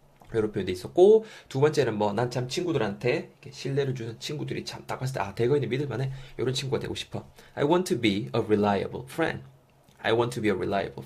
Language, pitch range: Korean, 115-160 Hz